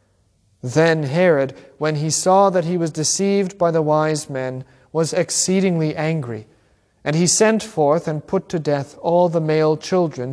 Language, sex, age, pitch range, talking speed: English, male, 40-59, 120-175 Hz, 165 wpm